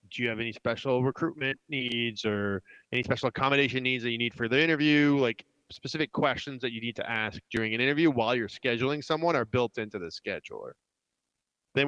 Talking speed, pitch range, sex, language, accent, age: 195 wpm, 115-140 Hz, male, English, American, 30-49